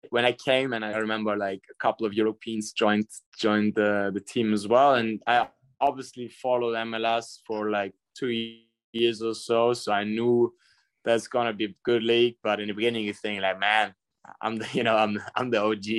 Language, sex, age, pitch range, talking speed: English, male, 20-39, 105-115 Hz, 200 wpm